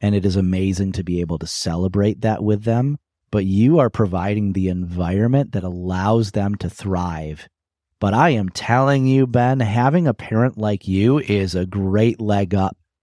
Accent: American